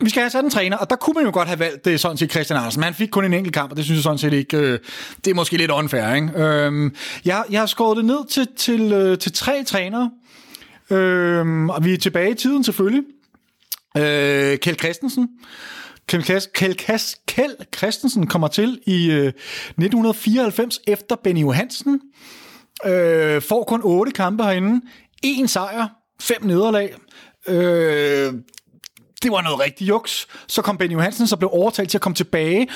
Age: 30-49